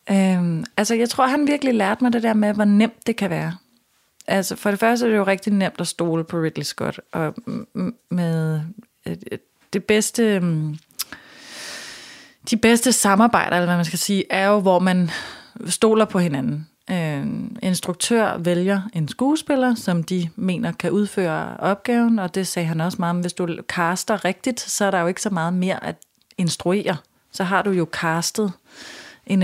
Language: Danish